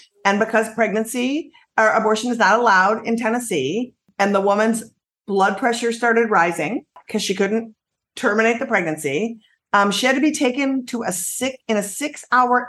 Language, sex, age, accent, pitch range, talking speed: English, female, 50-69, American, 200-255 Hz, 170 wpm